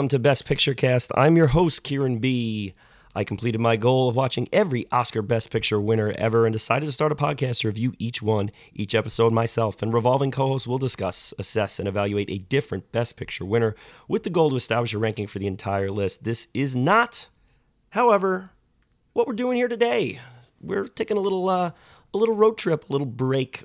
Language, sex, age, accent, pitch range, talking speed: English, male, 30-49, American, 115-160 Hz, 205 wpm